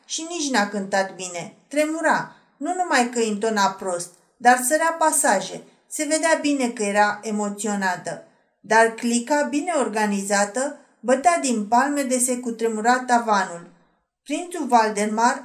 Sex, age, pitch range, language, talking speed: female, 40-59, 225-290 Hz, Romanian, 130 wpm